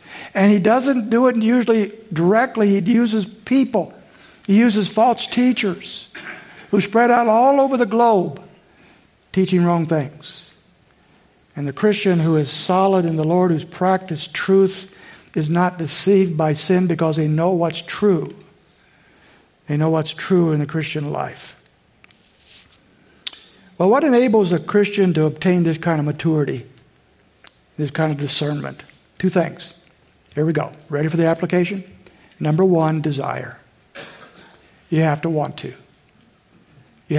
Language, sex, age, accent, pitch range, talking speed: English, male, 60-79, American, 155-195 Hz, 140 wpm